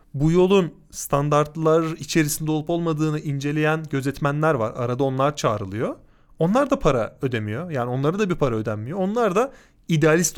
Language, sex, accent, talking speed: Turkish, male, native, 145 wpm